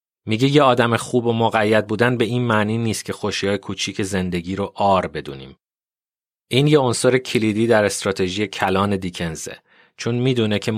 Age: 30-49